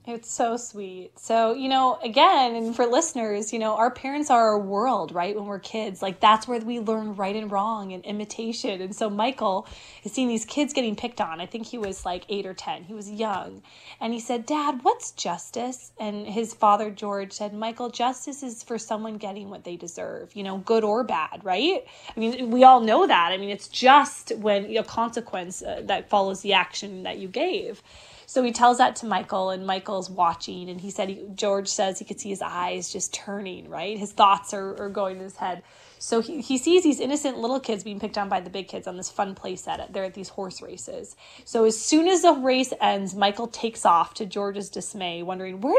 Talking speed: 220 wpm